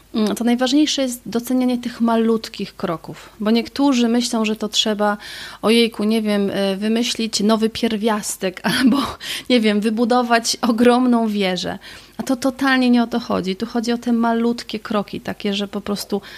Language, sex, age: Polish, female, 30-49